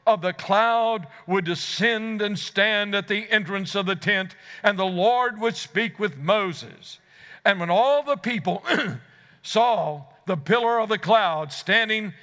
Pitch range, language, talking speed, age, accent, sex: 165-215 Hz, English, 155 wpm, 60-79, American, male